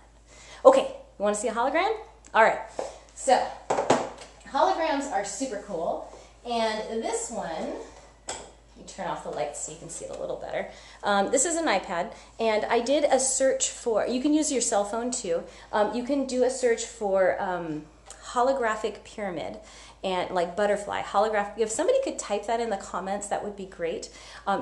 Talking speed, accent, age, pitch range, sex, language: 180 wpm, American, 30-49, 195-275 Hz, female, English